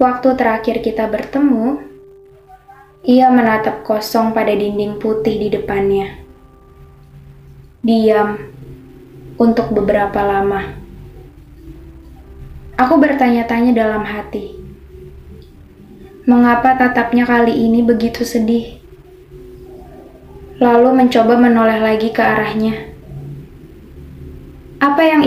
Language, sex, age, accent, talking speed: Indonesian, female, 10-29, native, 80 wpm